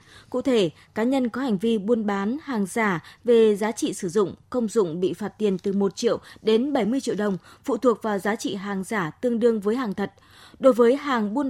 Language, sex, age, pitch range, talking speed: Vietnamese, female, 20-39, 195-250 Hz, 230 wpm